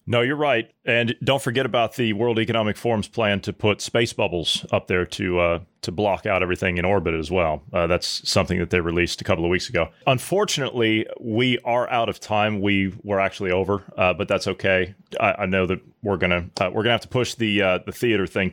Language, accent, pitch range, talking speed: English, American, 90-125 Hz, 225 wpm